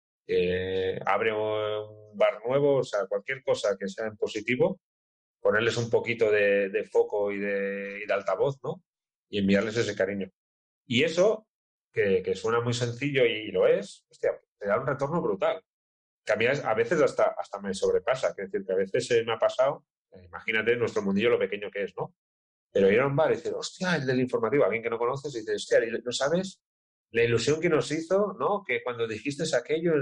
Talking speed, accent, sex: 205 wpm, Spanish, male